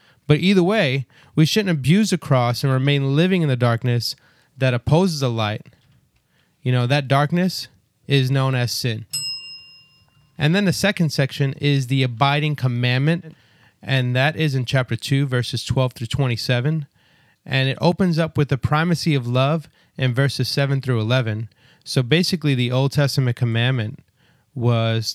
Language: English